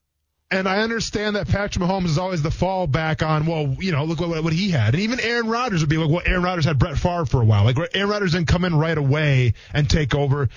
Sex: male